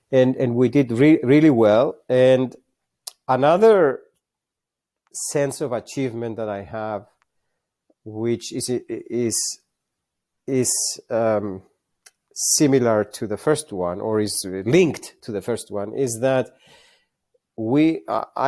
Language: Slovak